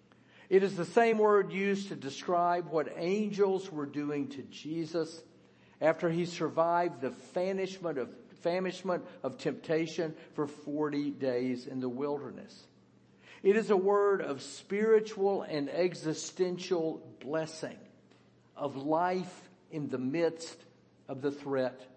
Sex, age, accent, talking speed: male, 50-69, American, 120 wpm